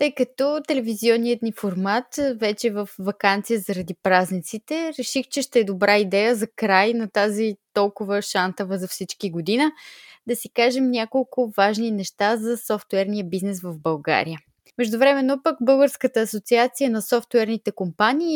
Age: 20-39